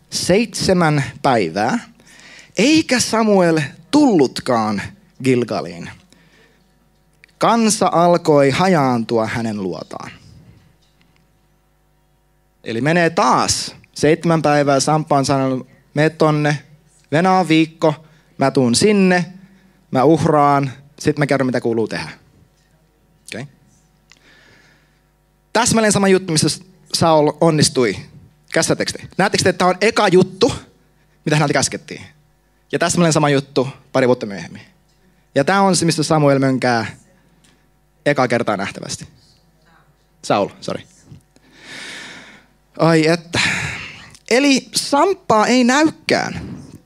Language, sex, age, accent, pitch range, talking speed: Finnish, male, 20-39, native, 140-190 Hz, 95 wpm